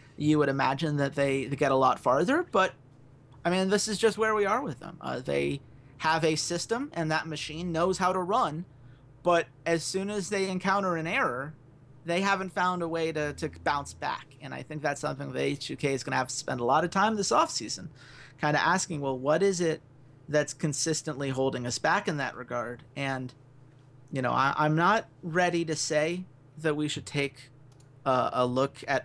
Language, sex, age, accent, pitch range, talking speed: English, male, 30-49, American, 135-175 Hz, 205 wpm